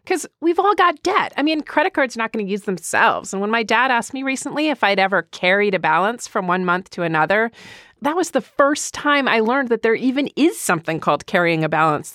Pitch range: 175-275 Hz